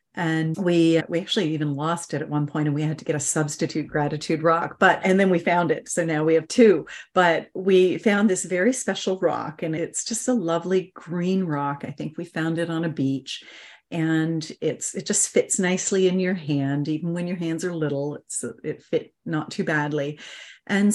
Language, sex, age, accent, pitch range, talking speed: English, female, 40-59, American, 155-185 Hz, 210 wpm